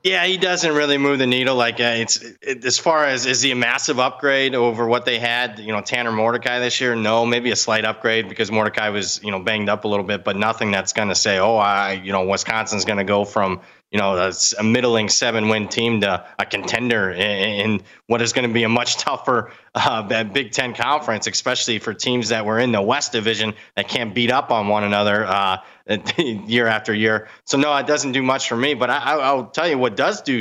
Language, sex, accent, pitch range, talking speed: English, male, American, 110-135 Hz, 240 wpm